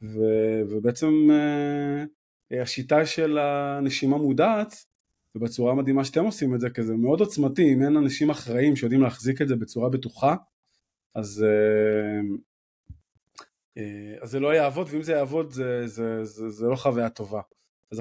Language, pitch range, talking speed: Hebrew, 115-145 Hz, 155 wpm